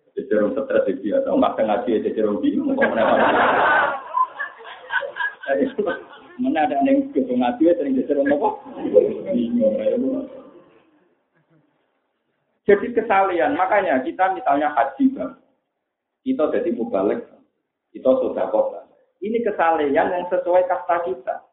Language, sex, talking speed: Malay, male, 90 wpm